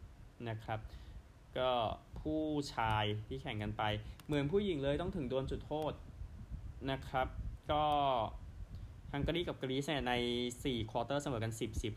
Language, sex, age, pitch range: Thai, male, 20-39, 105-130 Hz